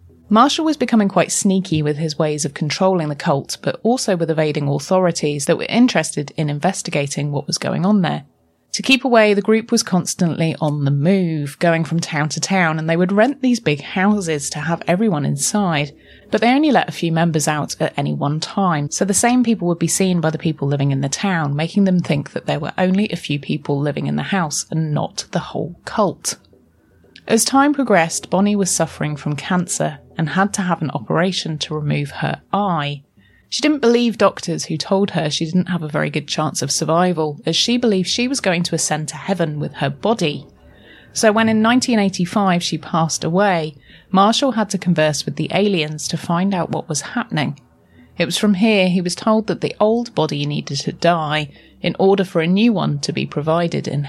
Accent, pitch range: British, 150-200 Hz